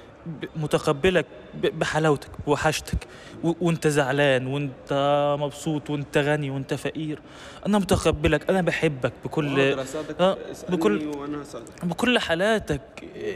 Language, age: Arabic, 20-39